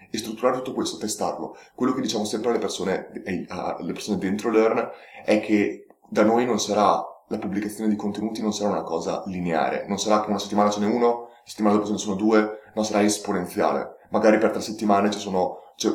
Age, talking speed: 30-49, 205 wpm